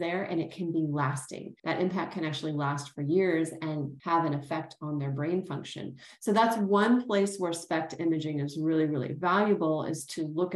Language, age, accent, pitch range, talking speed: English, 30-49, American, 160-215 Hz, 200 wpm